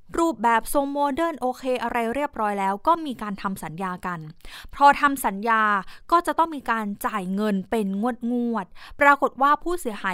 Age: 20-39